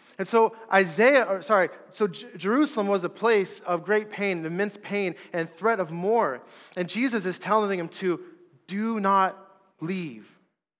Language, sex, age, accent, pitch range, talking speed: English, male, 30-49, American, 175-205 Hz, 160 wpm